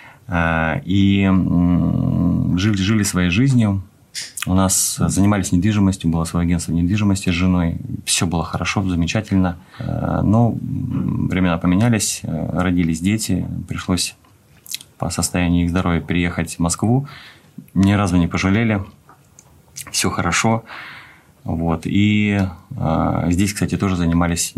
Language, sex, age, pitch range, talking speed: Russian, male, 30-49, 85-105 Hz, 105 wpm